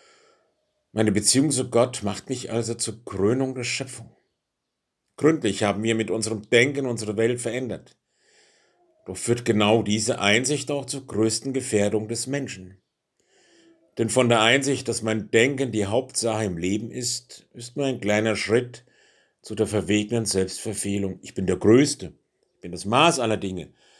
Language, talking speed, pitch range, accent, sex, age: German, 155 wpm, 105-130 Hz, German, male, 50-69